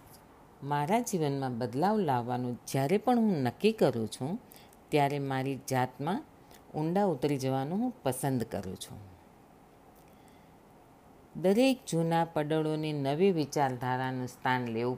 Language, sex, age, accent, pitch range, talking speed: Gujarati, female, 50-69, native, 130-200 Hz, 100 wpm